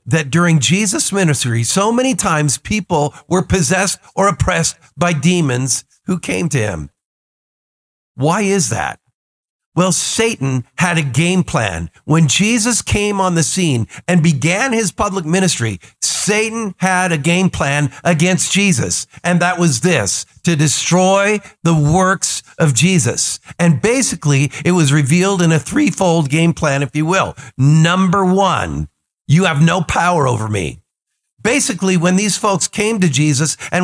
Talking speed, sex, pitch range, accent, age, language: 150 wpm, male, 150-190 Hz, American, 50-69, English